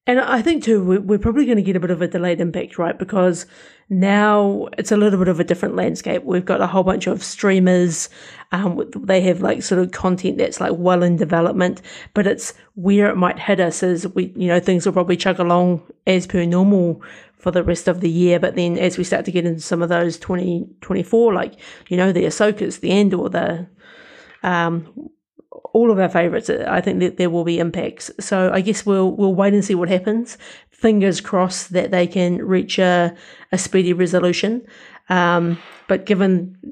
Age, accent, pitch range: 40-59, British, 180-215 Hz